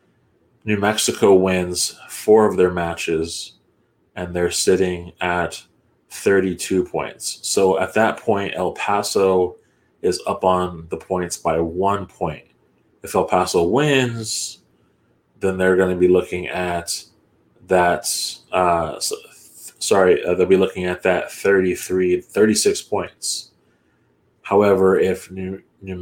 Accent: American